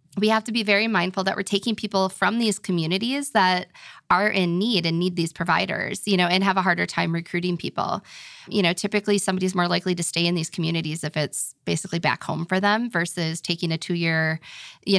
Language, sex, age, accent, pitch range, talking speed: English, female, 20-39, American, 170-205 Hz, 210 wpm